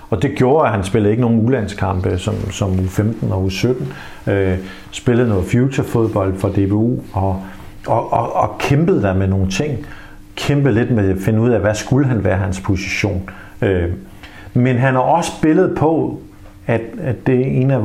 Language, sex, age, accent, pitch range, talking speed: Danish, male, 50-69, native, 100-120 Hz, 190 wpm